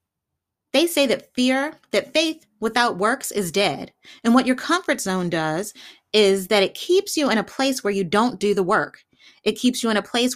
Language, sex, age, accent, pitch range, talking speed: English, female, 30-49, American, 205-270 Hz, 210 wpm